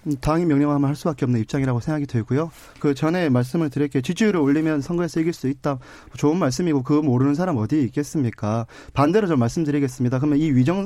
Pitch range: 135-190 Hz